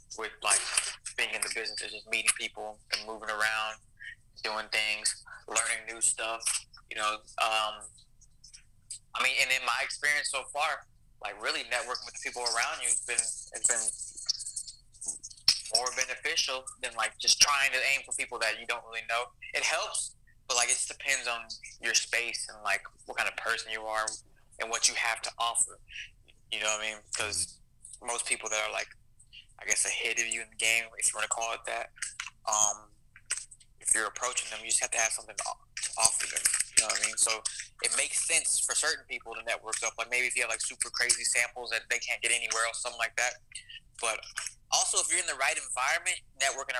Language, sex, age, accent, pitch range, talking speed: English, male, 20-39, American, 110-125 Hz, 210 wpm